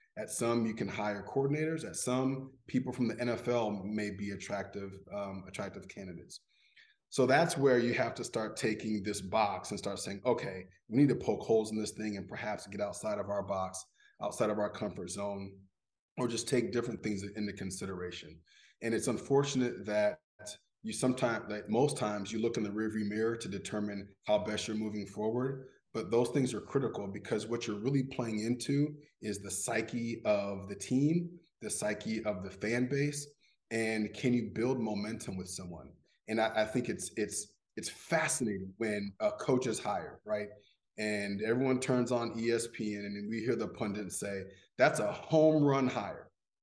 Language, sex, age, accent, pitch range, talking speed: English, male, 30-49, American, 105-125 Hz, 185 wpm